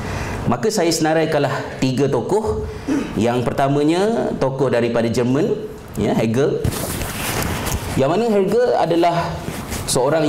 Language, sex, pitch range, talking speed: Malay, male, 140-200 Hz, 105 wpm